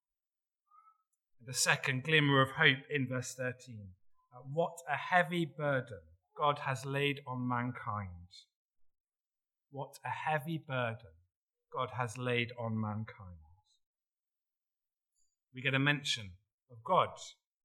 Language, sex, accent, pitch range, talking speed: English, male, British, 125-170 Hz, 110 wpm